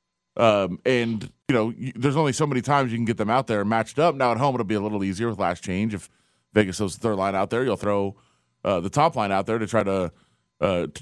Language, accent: English, American